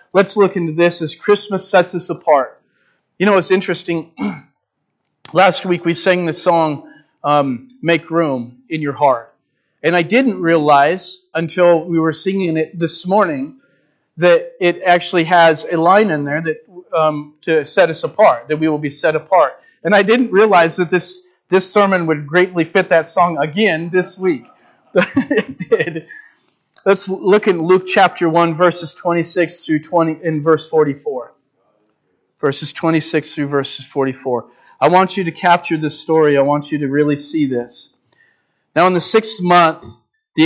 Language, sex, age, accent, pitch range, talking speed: English, male, 40-59, American, 155-185 Hz, 170 wpm